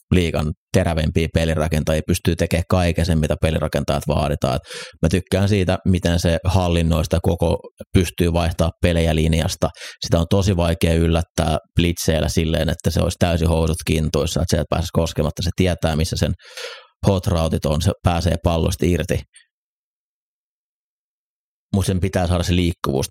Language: Finnish